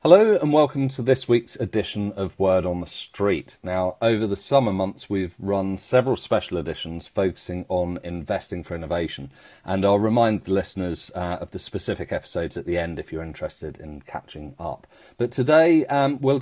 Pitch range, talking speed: 90-115 Hz, 185 wpm